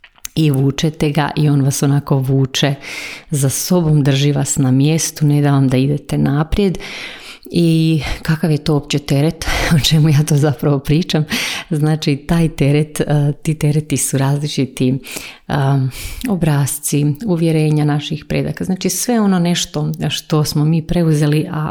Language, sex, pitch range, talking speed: Croatian, female, 140-160 Hz, 145 wpm